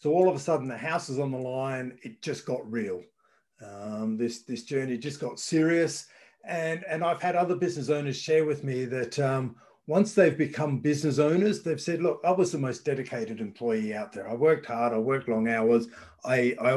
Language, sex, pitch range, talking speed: English, male, 115-150 Hz, 210 wpm